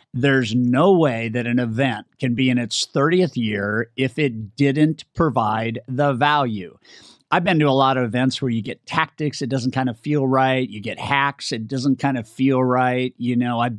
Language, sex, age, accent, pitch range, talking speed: English, male, 50-69, American, 120-140 Hz, 205 wpm